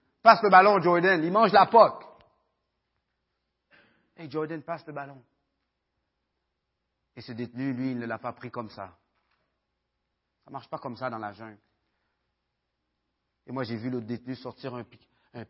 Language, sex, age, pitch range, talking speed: French, male, 40-59, 105-135 Hz, 175 wpm